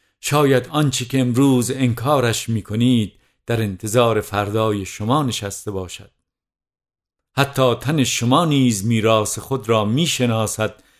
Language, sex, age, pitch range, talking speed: English, male, 50-69, 110-130 Hz, 110 wpm